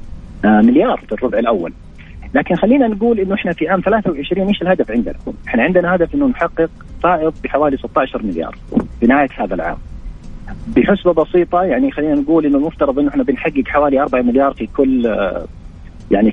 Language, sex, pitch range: Arabic, male, 115-180 Hz